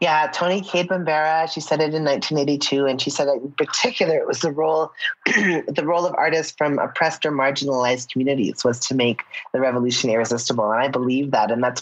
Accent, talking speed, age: American, 200 wpm, 30-49